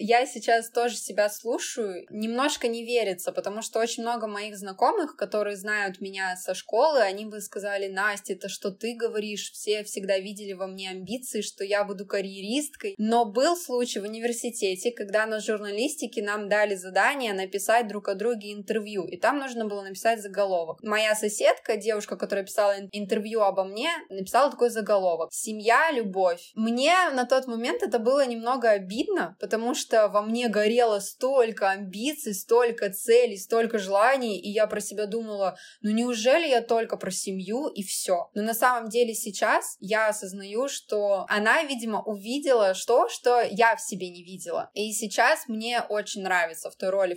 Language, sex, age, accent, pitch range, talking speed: Russian, female, 20-39, native, 200-235 Hz, 165 wpm